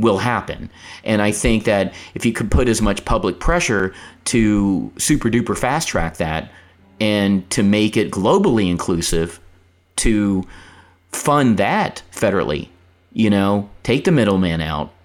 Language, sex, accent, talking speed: English, male, American, 145 wpm